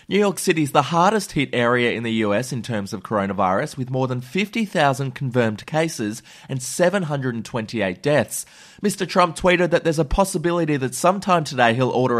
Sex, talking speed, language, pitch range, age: male, 175 wpm, English, 125-175 Hz, 20-39